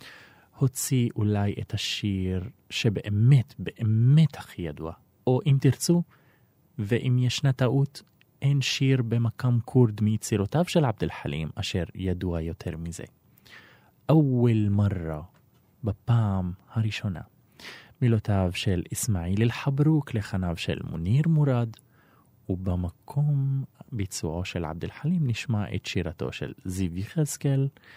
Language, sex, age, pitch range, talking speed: Hebrew, male, 30-49, 95-130 Hz, 105 wpm